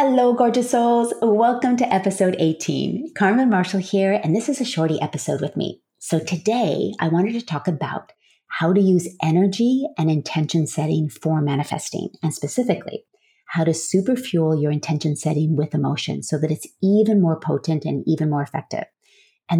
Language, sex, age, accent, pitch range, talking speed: English, female, 30-49, American, 155-200 Hz, 170 wpm